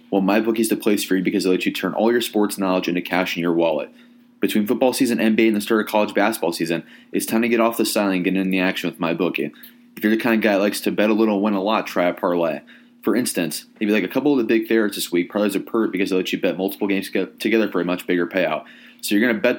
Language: English